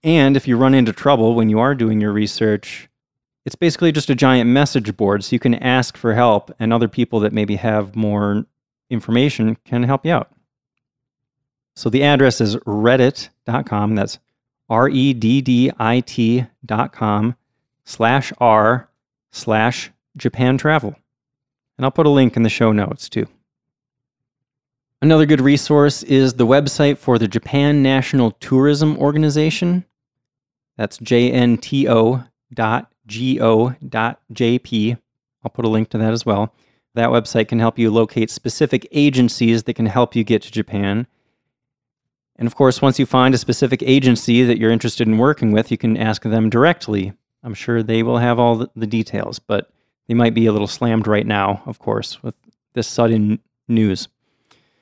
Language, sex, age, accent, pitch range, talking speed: English, male, 30-49, American, 115-135 Hz, 155 wpm